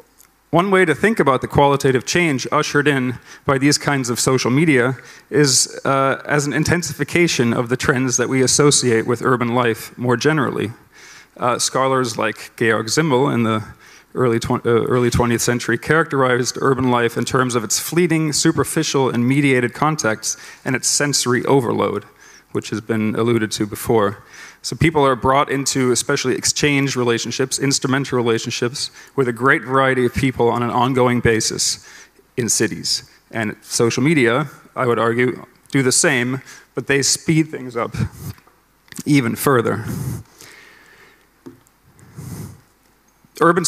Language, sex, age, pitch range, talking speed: Dutch, male, 30-49, 120-145 Hz, 145 wpm